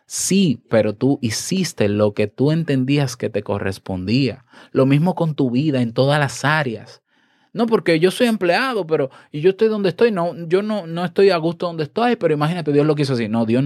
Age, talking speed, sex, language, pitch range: 20-39, 205 wpm, male, Spanish, 115-150 Hz